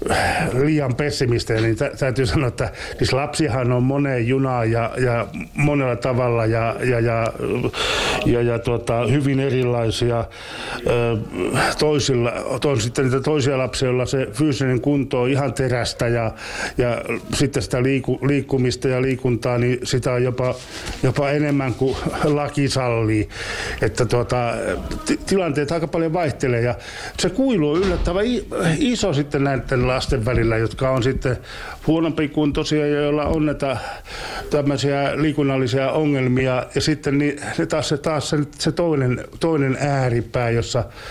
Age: 60-79